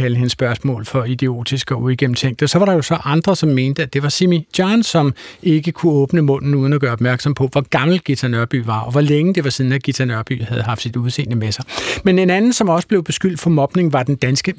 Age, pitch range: 60-79, 125-165 Hz